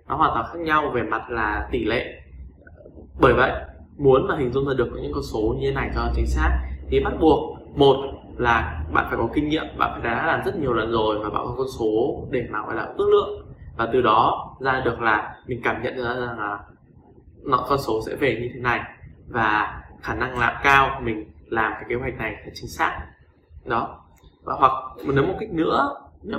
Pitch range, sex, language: 105-135 Hz, male, Vietnamese